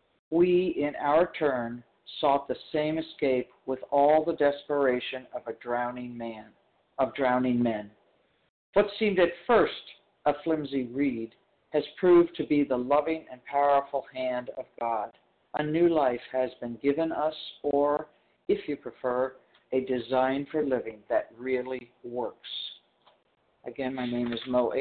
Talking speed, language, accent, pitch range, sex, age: 145 wpm, English, American, 120-145 Hz, male, 50-69